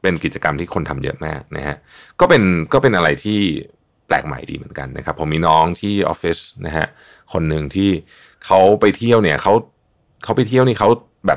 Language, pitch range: Thai, 80-110 Hz